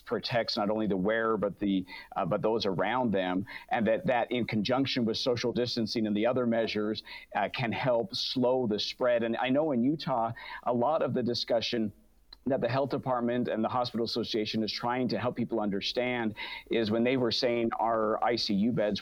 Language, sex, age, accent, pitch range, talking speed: English, male, 50-69, American, 110-130 Hz, 195 wpm